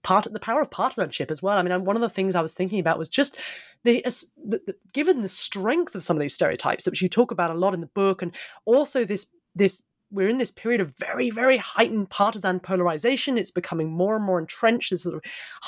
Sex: female